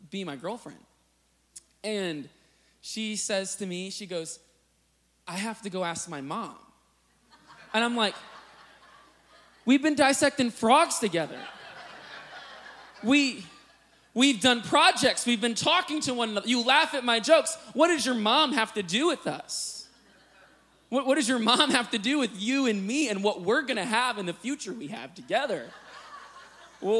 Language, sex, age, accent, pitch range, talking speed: English, male, 20-39, American, 160-240 Hz, 165 wpm